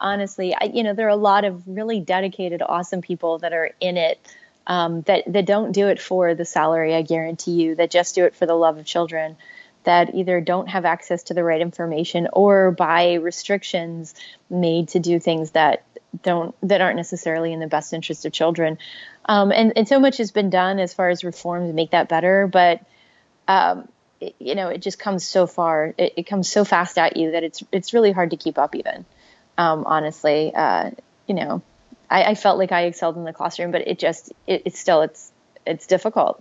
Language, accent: English, American